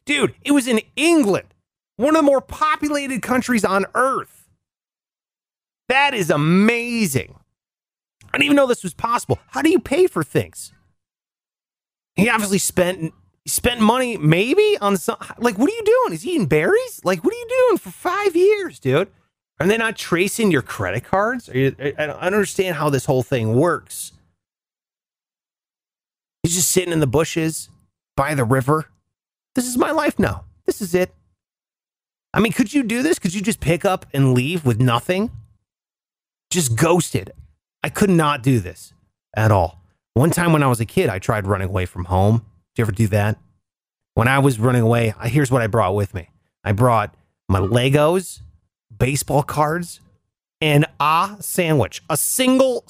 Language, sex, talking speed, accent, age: English, male, 175 wpm, American, 30-49